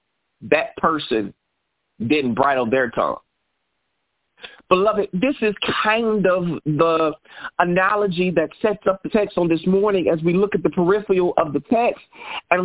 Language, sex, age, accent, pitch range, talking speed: English, male, 50-69, American, 175-215 Hz, 145 wpm